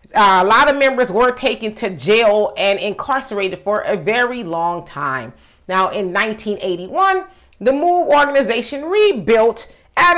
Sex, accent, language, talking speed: female, American, English, 140 wpm